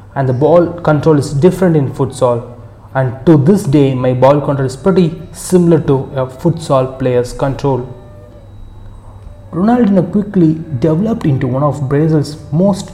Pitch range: 125-160 Hz